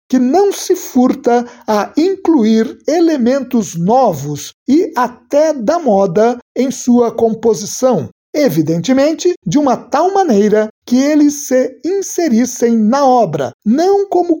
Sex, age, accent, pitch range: male, 60-79, Brazilian, 195-280 Hz